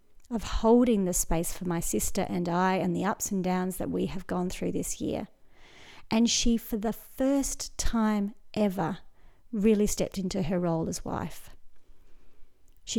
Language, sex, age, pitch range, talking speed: English, female, 40-59, 175-220 Hz, 165 wpm